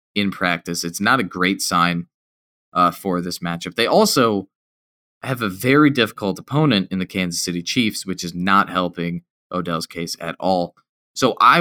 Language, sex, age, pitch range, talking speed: English, male, 20-39, 90-115 Hz, 170 wpm